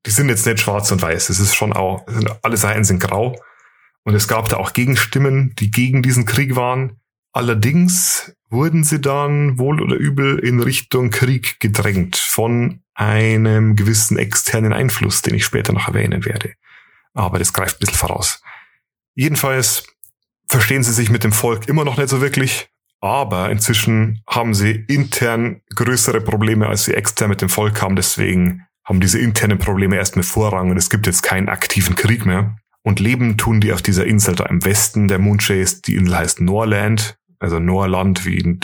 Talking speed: 180 wpm